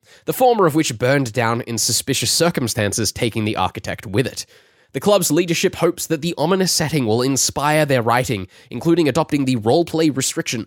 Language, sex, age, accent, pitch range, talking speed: English, male, 10-29, Australian, 110-150 Hz, 175 wpm